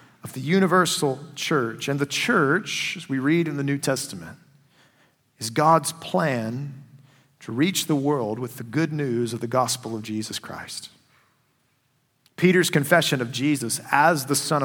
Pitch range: 125-155 Hz